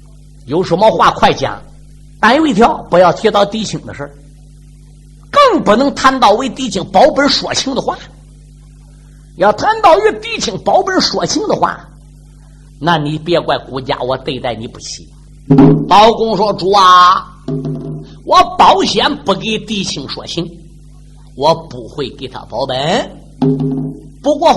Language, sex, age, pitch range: Chinese, male, 50-69, 145-220 Hz